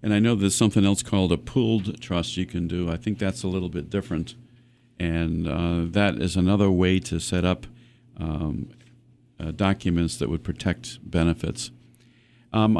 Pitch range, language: 85-110 Hz, English